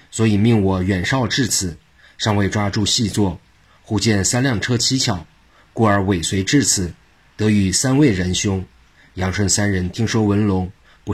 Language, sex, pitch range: Chinese, male, 95-110 Hz